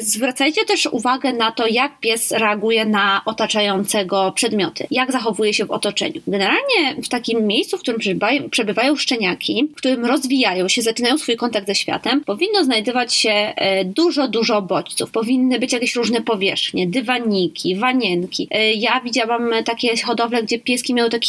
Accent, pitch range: native, 210-260 Hz